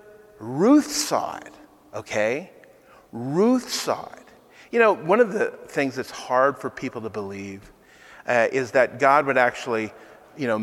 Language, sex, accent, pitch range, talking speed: English, male, American, 115-155 Hz, 150 wpm